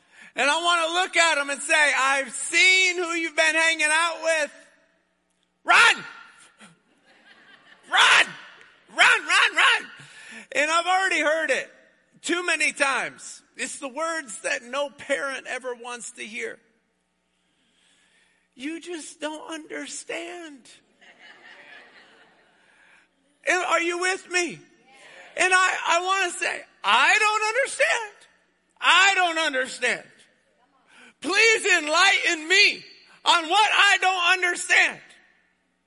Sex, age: male, 50-69